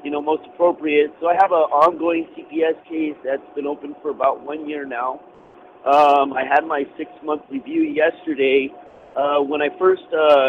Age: 50-69